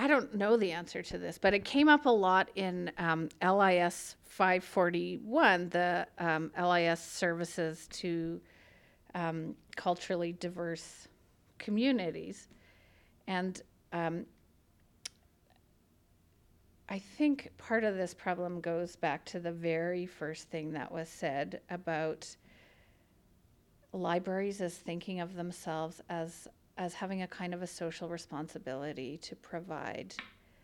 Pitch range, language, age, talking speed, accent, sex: 165-195 Hz, English, 50-69, 120 wpm, American, female